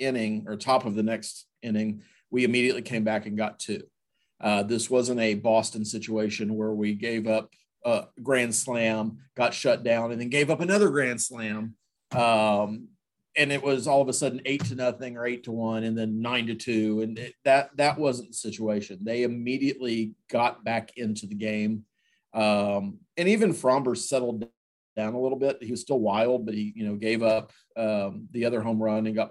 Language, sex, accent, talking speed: English, male, American, 200 wpm